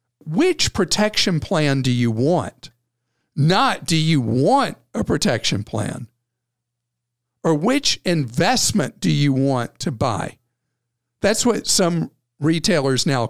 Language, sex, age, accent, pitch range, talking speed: English, male, 50-69, American, 120-165 Hz, 115 wpm